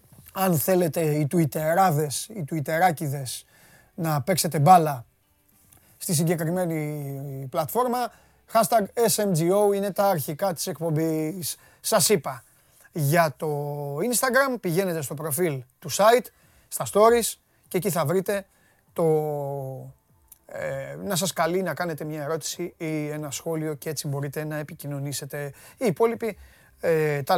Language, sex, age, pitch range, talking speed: Greek, male, 30-49, 145-185 Hz, 115 wpm